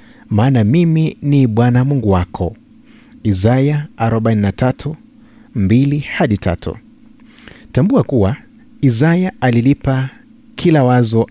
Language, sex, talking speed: Swahili, male, 85 wpm